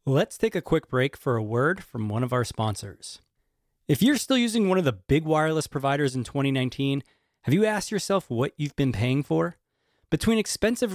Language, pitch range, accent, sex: English, 130-190 Hz, American, male